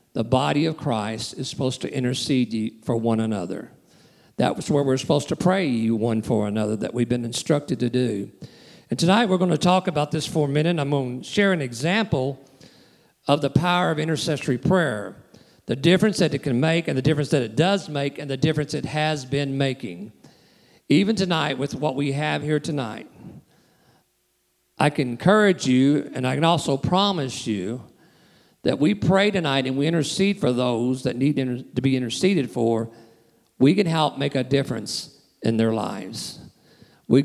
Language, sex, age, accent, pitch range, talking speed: English, male, 50-69, American, 125-165 Hz, 180 wpm